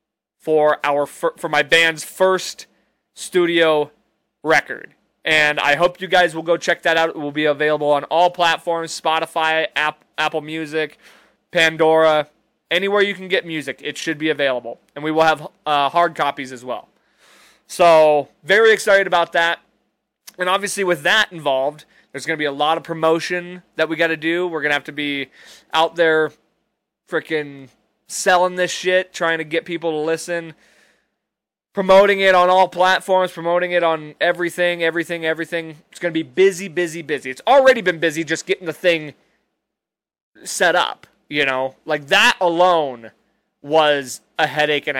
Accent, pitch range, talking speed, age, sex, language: American, 150-180 Hz, 170 wpm, 20-39, male, English